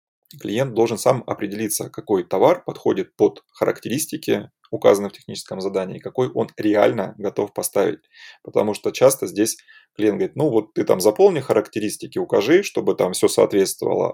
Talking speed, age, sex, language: 150 wpm, 20-39, male, Russian